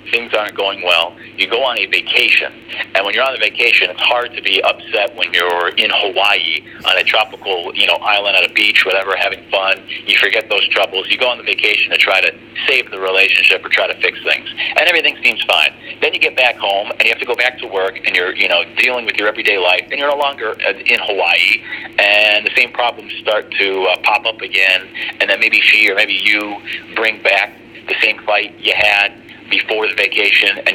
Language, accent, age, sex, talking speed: English, American, 50-69, male, 225 wpm